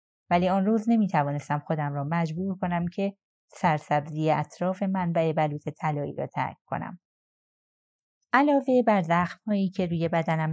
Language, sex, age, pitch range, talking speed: Persian, female, 30-49, 150-190 Hz, 130 wpm